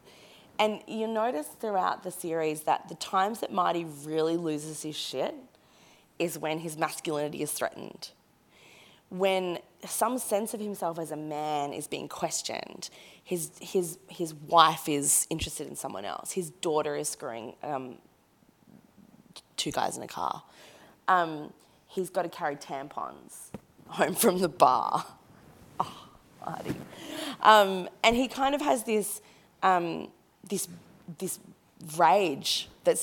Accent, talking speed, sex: Australian, 135 wpm, female